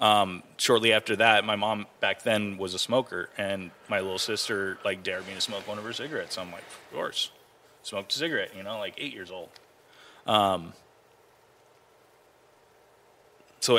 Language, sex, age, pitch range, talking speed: English, male, 20-39, 95-115 Hz, 175 wpm